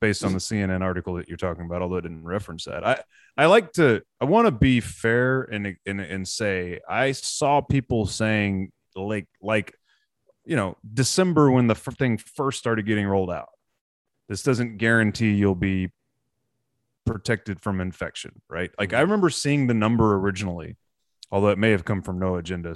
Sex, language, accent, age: male, English, American, 30-49